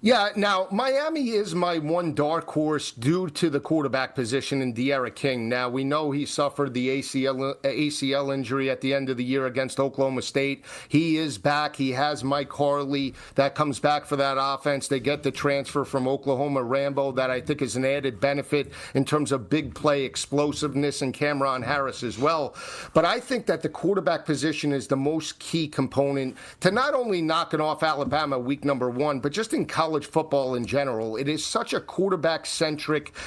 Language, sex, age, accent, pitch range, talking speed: English, male, 40-59, American, 135-160 Hz, 195 wpm